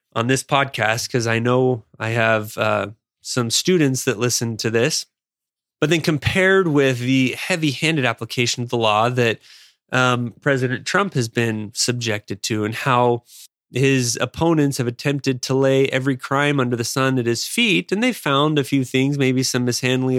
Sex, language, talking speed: male, English, 170 wpm